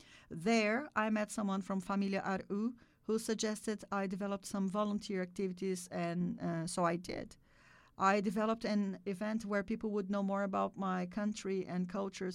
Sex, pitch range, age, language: female, 180-220 Hz, 50-69, Finnish